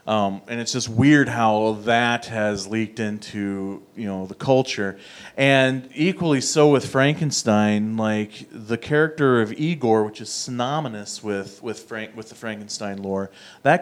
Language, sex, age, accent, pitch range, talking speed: English, male, 40-59, American, 105-125 Hz, 150 wpm